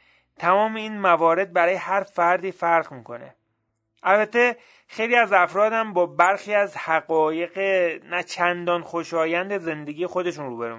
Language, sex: Persian, male